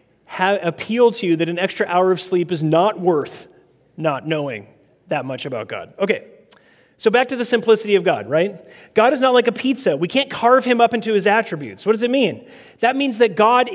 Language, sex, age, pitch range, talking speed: English, male, 30-49, 185-245 Hz, 215 wpm